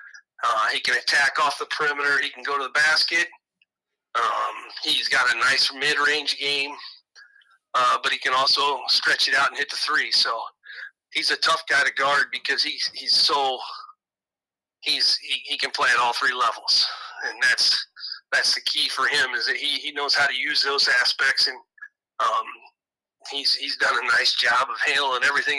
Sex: male